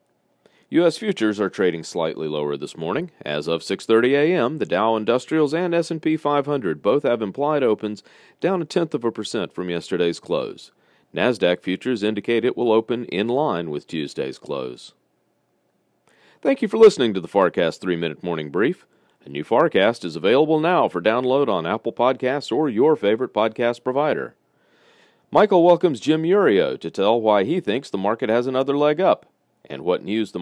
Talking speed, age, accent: 170 wpm, 40-59, American